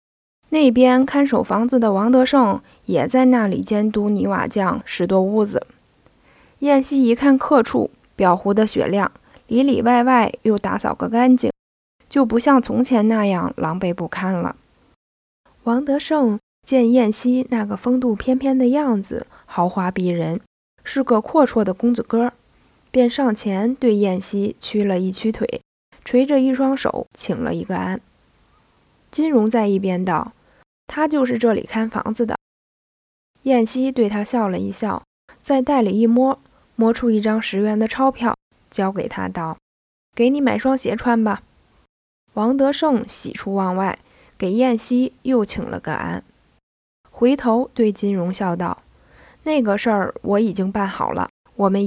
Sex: female